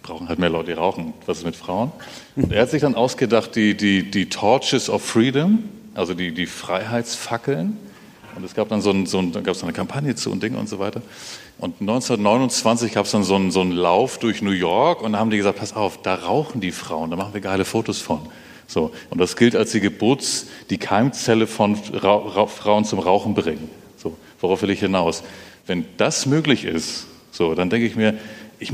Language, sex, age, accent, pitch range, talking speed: German, male, 40-59, German, 95-115 Hz, 220 wpm